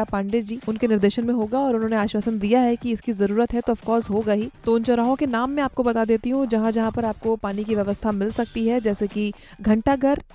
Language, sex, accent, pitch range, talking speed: Hindi, female, native, 215-255 Hz, 215 wpm